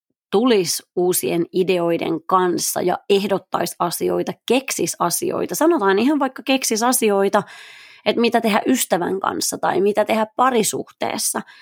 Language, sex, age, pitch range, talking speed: Finnish, female, 30-49, 175-235 Hz, 120 wpm